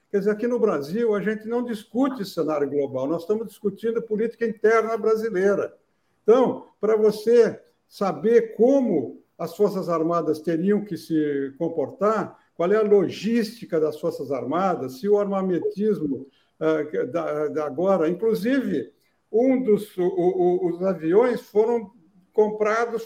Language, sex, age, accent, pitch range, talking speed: Portuguese, male, 60-79, Brazilian, 165-225 Hz, 135 wpm